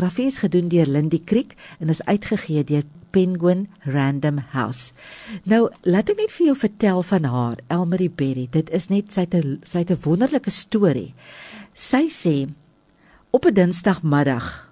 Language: English